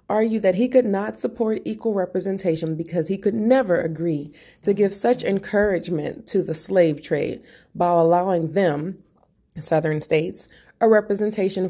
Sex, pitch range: female, 165-210 Hz